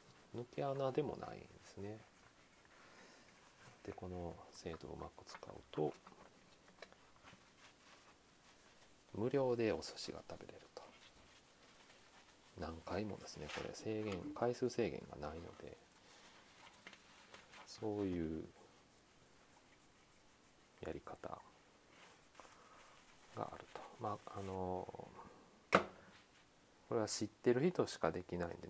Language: Japanese